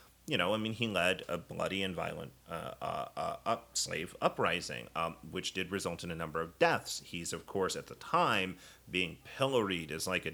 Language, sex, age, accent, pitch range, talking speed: English, male, 30-49, American, 85-100 Hz, 205 wpm